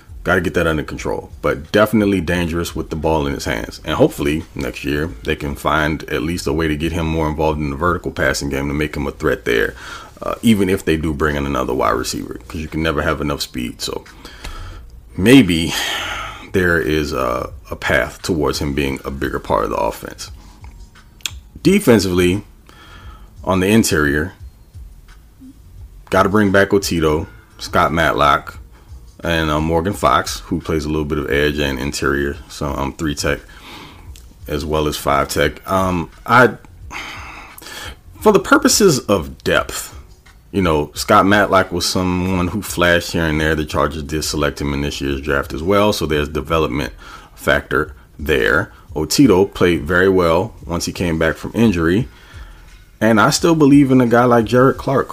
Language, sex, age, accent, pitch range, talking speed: English, male, 30-49, American, 75-95 Hz, 175 wpm